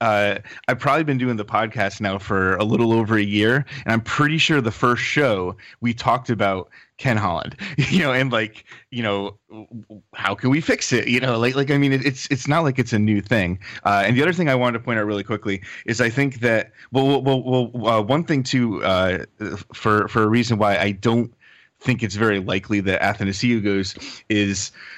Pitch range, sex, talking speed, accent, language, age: 100-120 Hz, male, 220 wpm, American, English, 30-49